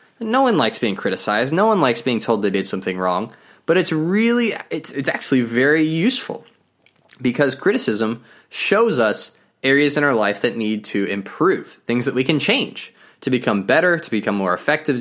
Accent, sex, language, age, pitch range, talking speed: American, male, English, 20-39, 120-155 Hz, 185 wpm